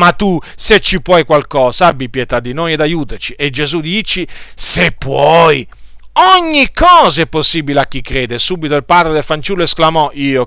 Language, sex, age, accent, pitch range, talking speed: Italian, male, 40-59, native, 140-200 Hz, 180 wpm